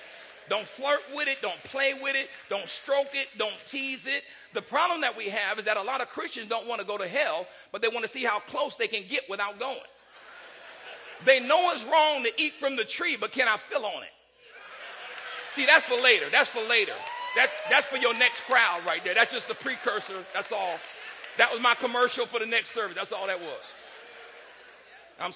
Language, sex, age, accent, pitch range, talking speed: English, male, 40-59, American, 225-310 Hz, 215 wpm